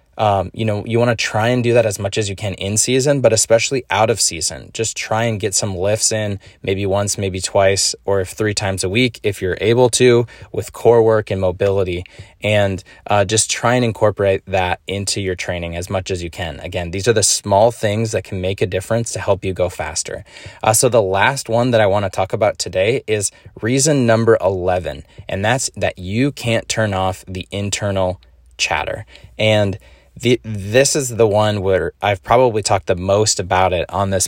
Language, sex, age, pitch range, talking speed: English, male, 10-29, 95-115 Hz, 210 wpm